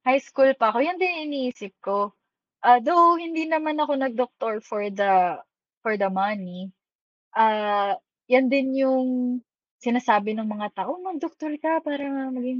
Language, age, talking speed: Filipino, 20-39, 150 wpm